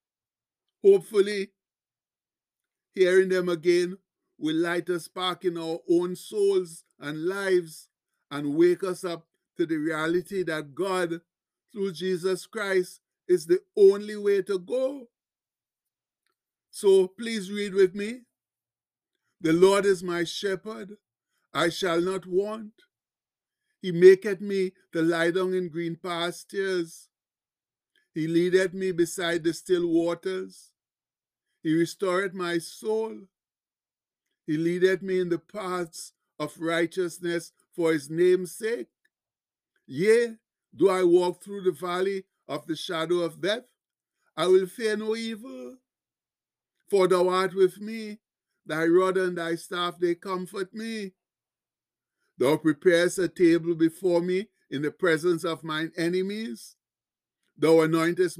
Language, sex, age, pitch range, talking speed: English, male, 60-79, 170-195 Hz, 125 wpm